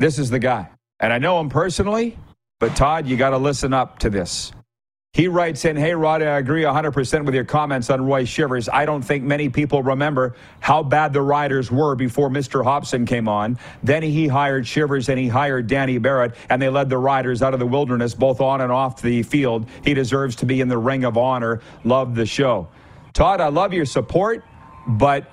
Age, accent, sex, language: 40-59, American, male, English